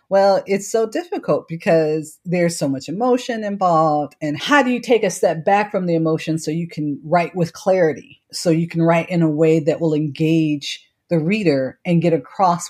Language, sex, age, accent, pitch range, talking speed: English, female, 40-59, American, 150-185 Hz, 200 wpm